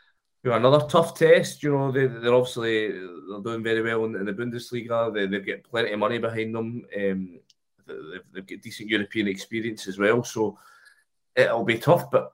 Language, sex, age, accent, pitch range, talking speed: English, male, 20-39, British, 110-135 Hz, 190 wpm